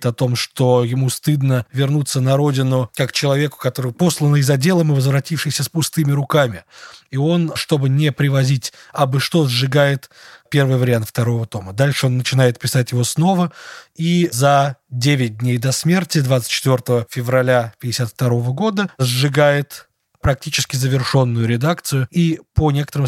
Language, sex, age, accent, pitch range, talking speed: Russian, male, 20-39, native, 120-140 Hz, 145 wpm